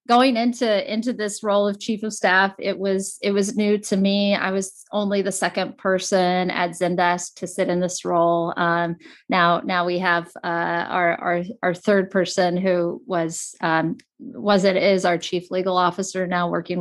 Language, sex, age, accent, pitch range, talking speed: English, female, 30-49, American, 175-215 Hz, 185 wpm